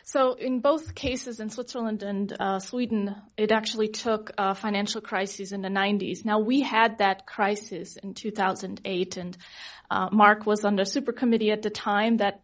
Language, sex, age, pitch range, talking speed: English, female, 30-49, 200-225 Hz, 180 wpm